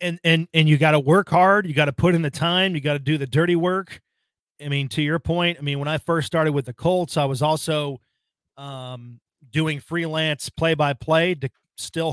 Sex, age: male, 30-49